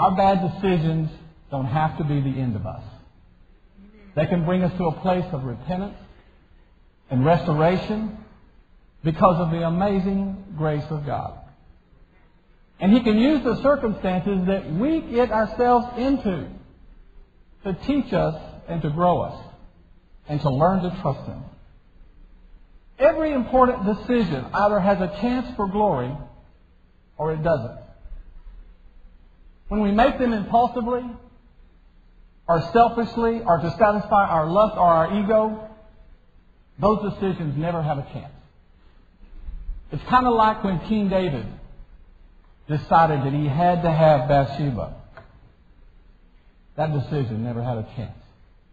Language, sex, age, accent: English, male, 50-69, American